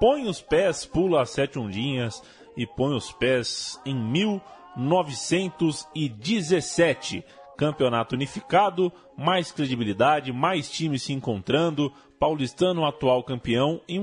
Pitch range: 135-180 Hz